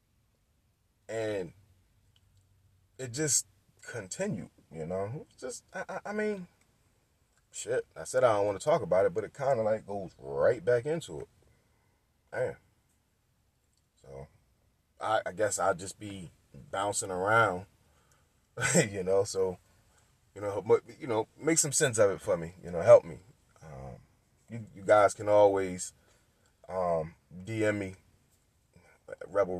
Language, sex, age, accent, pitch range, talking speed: English, male, 20-39, American, 95-135 Hz, 140 wpm